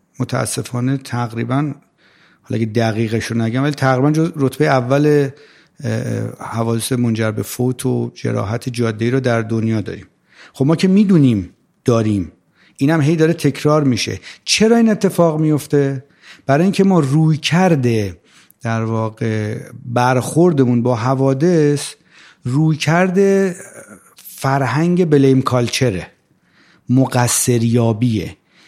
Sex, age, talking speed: male, 50-69, 105 wpm